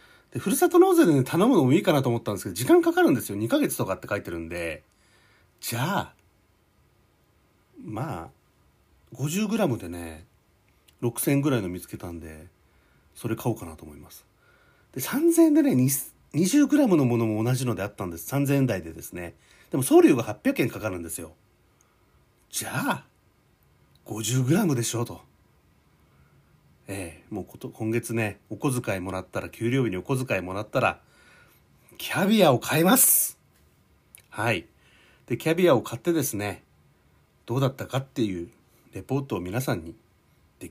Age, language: 40-59, Japanese